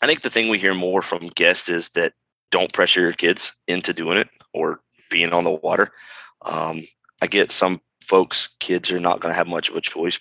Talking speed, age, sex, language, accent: 225 wpm, 30-49, male, English, American